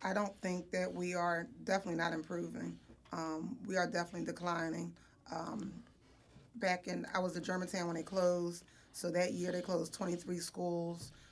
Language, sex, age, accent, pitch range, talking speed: English, female, 20-39, American, 170-190 Hz, 165 wpm